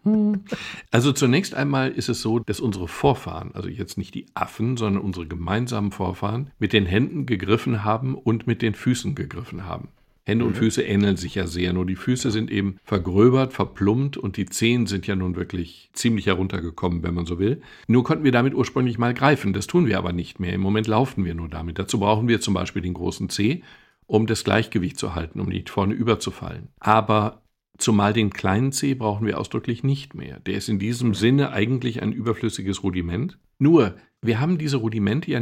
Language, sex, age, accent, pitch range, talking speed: German, male, 50-69, German, 100-125 Hz, 200 wpm